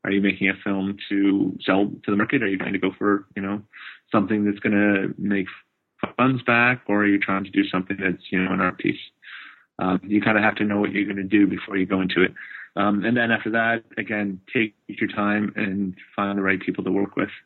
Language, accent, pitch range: English, American, 95-105 Hz